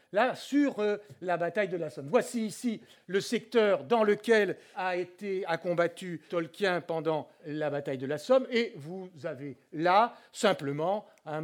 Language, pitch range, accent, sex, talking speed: French, 170-230 Hz, French, male, 165 wpm